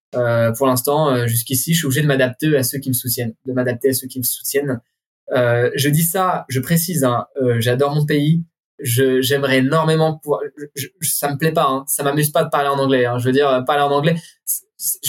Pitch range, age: 130-160 Hz, 20-39